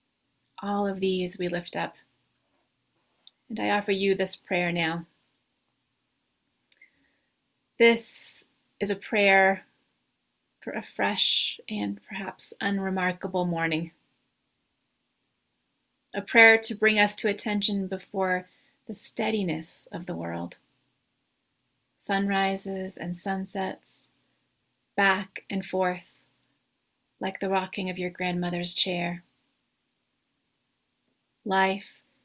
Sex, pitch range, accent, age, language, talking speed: female, 180-200 Hz, American, 30-49, English, 95 wpm